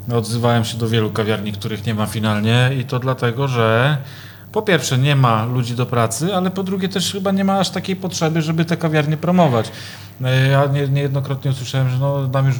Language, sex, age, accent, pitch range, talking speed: Polish, male, 40-59, native, 115-135 Hz, 200 wpm